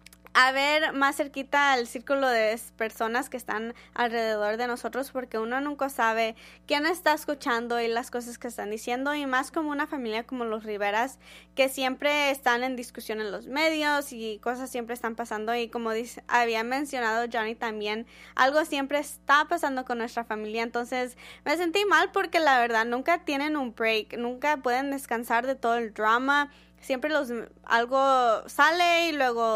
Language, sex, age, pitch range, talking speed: Spanish, female, 20-39, 230-285 Hz, 170 wpm